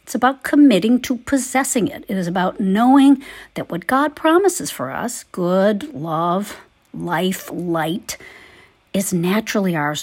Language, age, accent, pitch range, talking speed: English, 50-69, American, 165-235 Hz, 140 wpm